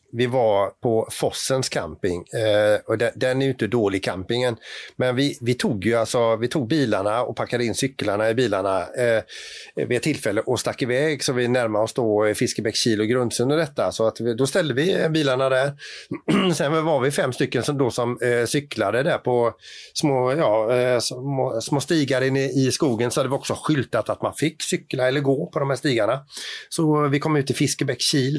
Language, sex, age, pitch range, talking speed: Swedish, male, 30-49, 115-140 Hz, 195 wpm